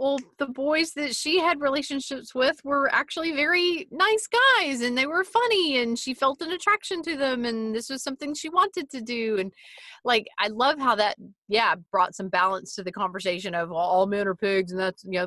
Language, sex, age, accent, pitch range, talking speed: English, female, 30-49, American, 190-265 Hz, 215 wpm